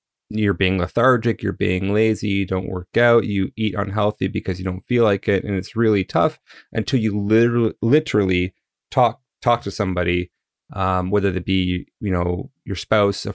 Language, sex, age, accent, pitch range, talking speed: English, male, 30-49, American, 90-110 Hz, 180 wpm